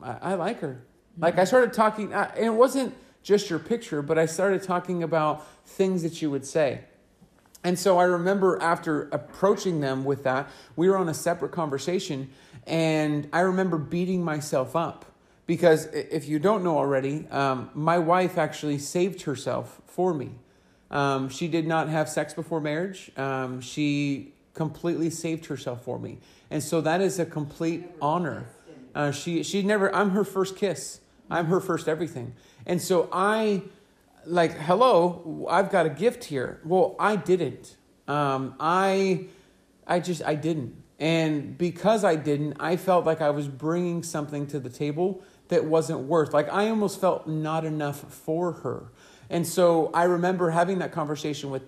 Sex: male